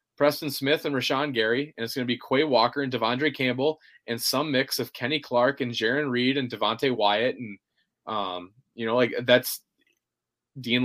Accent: American